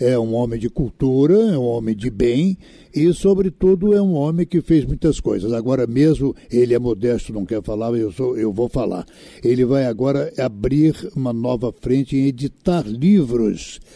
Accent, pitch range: Brazilian, 120-170 Hz